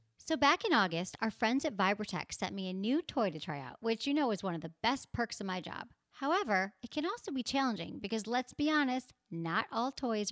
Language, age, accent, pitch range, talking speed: English, 40-59, American, 190-260 Hz, 240 wpm